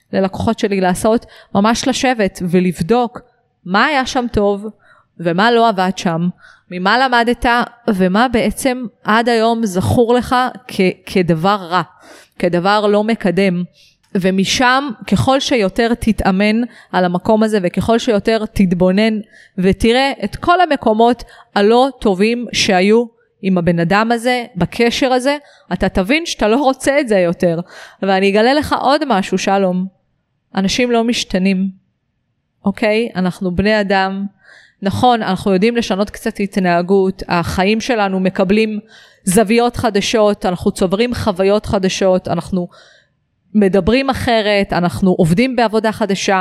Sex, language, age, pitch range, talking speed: female, Hebrew, 30-49, 190-235 Hz, 125 wpm